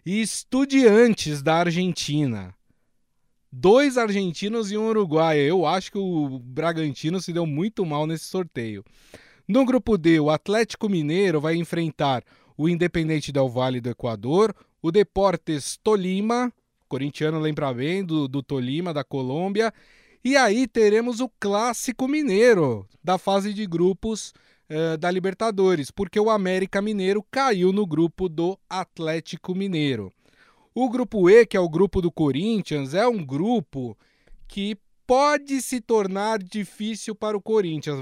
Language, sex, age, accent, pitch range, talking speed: Portuguese, male, 20-39, Brazilian, 155-210 Hz, 140 wpm